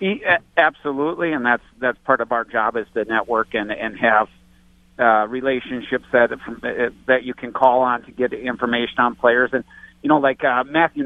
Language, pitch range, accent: English, 115-135 Hz, American